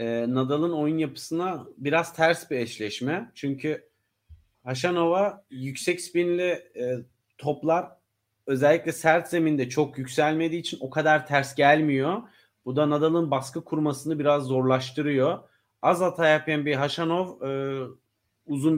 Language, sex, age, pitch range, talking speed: Turkish, male, 40-59, 120-150 Hz, 120 wpm